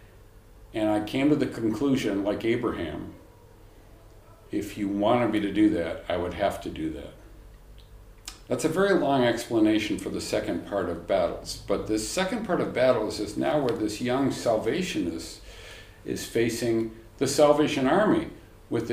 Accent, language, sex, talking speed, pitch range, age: American, English, male, 160 wpm, 110-150 Hz, 60-79